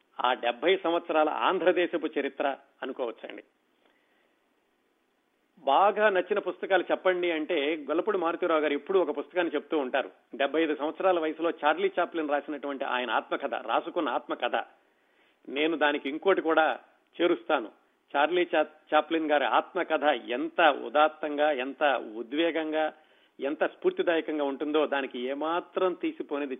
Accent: native